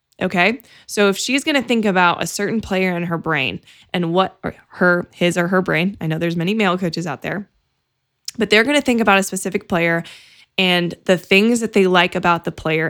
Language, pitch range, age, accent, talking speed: English, 180-220 Hz, 20-39, American, 220 wpm